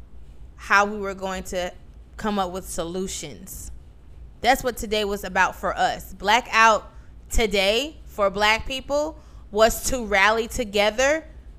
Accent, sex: American, female